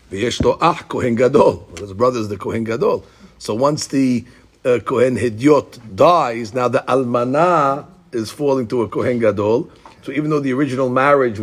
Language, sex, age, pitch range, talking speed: English, male, 50-69, 110-145 Hz, 150 wpm